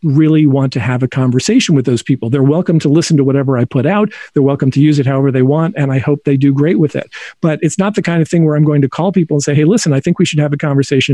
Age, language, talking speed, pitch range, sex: 50-69, English, 310 wpm, 140-175 Hz, male